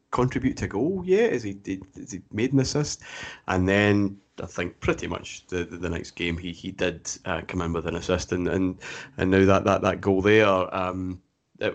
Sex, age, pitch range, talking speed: male, 30-49, 90-105 Hz, 210 wpm